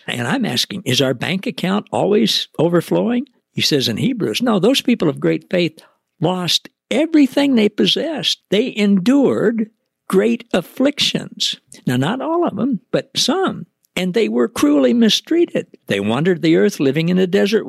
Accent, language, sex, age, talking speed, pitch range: American, English, male, 60-79, 160 wpm, 150-230 Hz